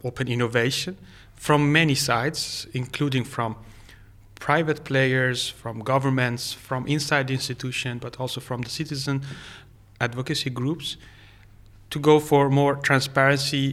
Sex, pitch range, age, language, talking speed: male, 120-145 Hz, 30-49, English, 120 wpm